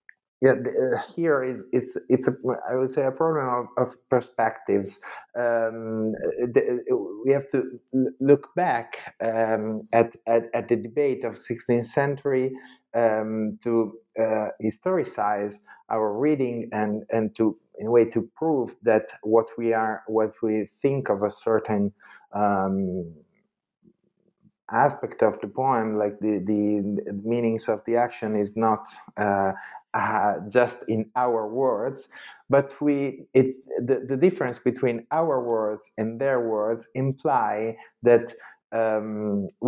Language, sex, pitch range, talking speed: English, male, 110-135 Hz, 135 wpm